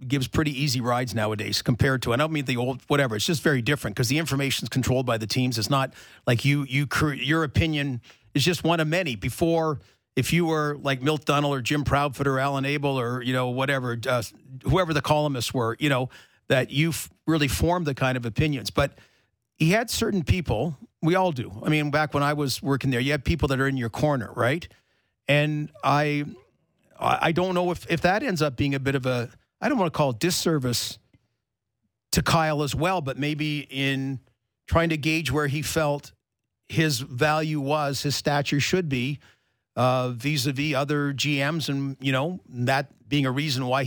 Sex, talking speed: male, 205 wpm